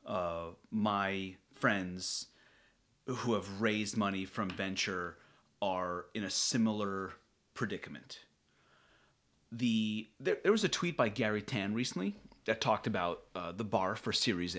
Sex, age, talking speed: male, 30-49, 130 wpm